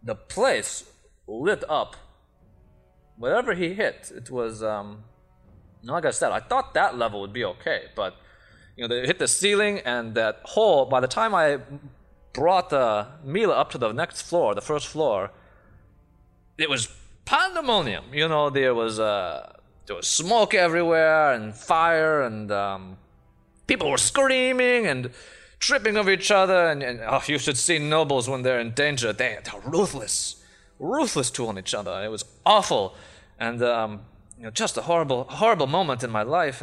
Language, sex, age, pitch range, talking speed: English, male, 20-39, 105-155 Hz, 170 wpm